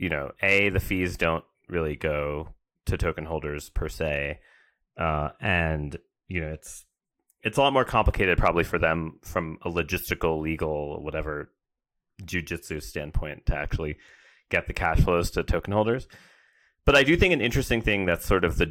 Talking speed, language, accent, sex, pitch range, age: 170 wpm, English, American, male, 75-95 Hz, 30-49